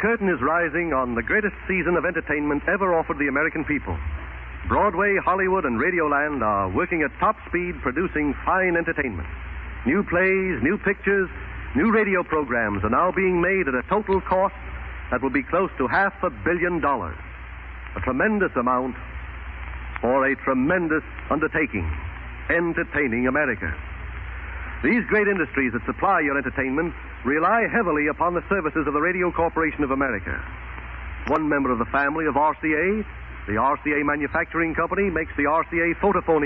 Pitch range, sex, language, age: 120-175 Hz, male, English, 60-79